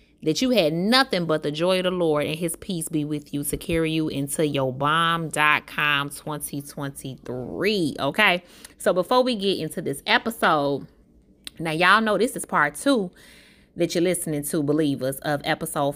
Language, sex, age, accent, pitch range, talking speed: English, female, 20-39, American, 150-220 Hz, 170 wpm